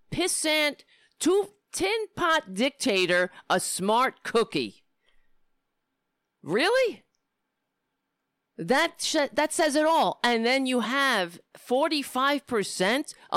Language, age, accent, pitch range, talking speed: English, 50-69, American, 180-270 Hz, 85 wpm